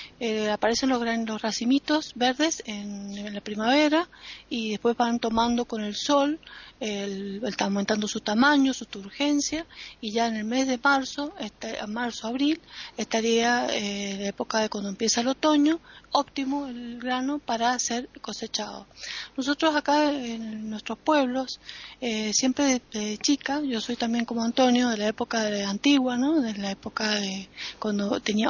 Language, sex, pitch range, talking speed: Spanish, female, 215-270 Hz, 160 wpm